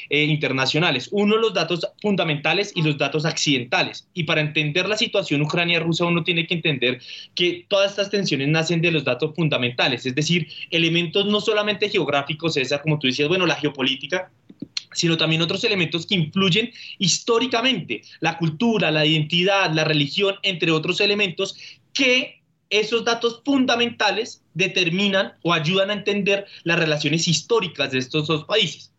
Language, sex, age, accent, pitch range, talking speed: Spanish, male, 20-39, Colombian, 155-205 Hz, 155 wpm